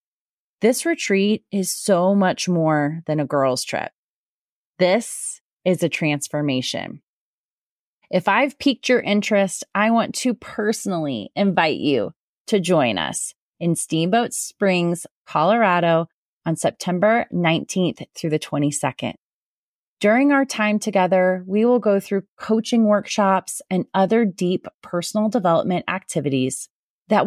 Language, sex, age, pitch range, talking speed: English, female, 30-49, 170-220 Hz, 120 wpm